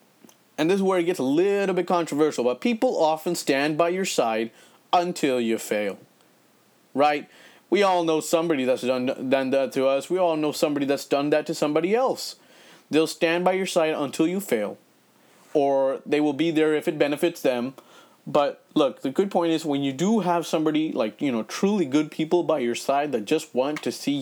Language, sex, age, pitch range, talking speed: English, male, 30-49, 140-180 Hz, 205 wpm